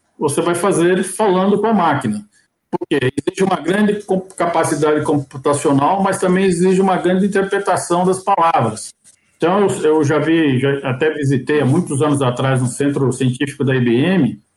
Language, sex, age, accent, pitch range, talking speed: Portuguese, male, 60-79, Brazilian, 135-185 Hz, 155 wpm